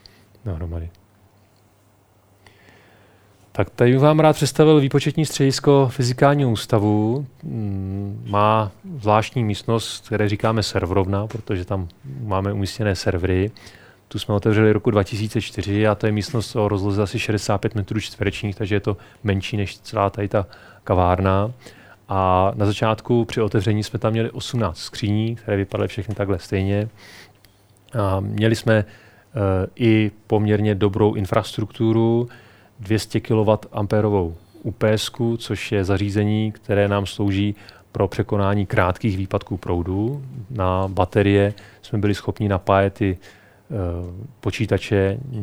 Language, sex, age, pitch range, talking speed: Czech, male, 30-49, 100-110 Hz, 120 wpm